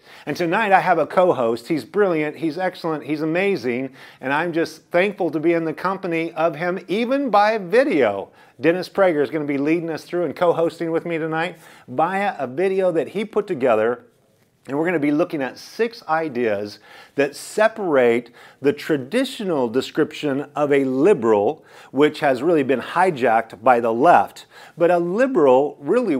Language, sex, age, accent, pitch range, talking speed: English, male, 40-59, American, 135-180 Hz, 175 wpm